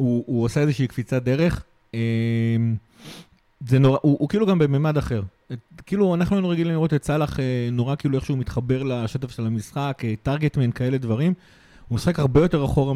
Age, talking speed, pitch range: 30-49, 165 wpm, 125-160 Hz